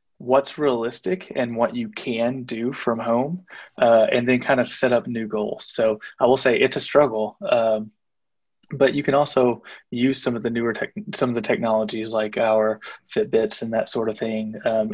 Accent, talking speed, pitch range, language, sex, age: American, 195 wpm, 115-140 Hz, English, male, 20-39